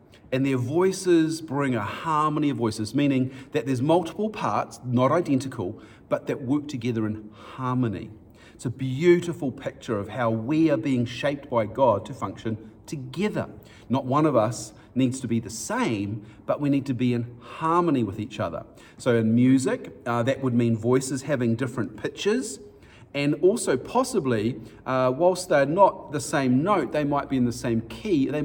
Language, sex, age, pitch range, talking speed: English, male, 40-59, 110-145 Hz, 175 wpm